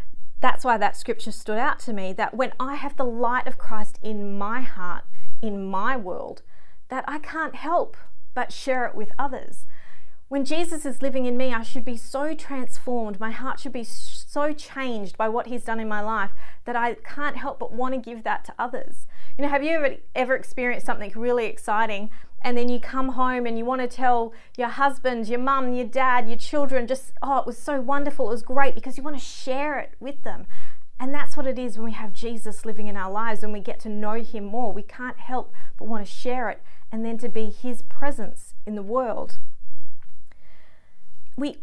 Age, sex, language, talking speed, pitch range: 30-49, female, English, 215 wpm, 220-265 Hz